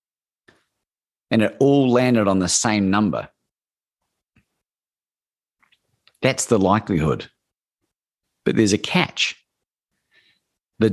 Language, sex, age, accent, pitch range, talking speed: English, male, 40-59, Australian, 95-125 Hz, 90 wpm